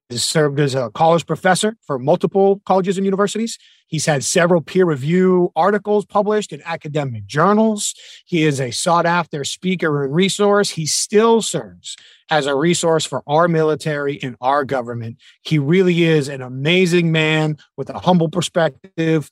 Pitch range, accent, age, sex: 145-175 Hz, American, 30-49, male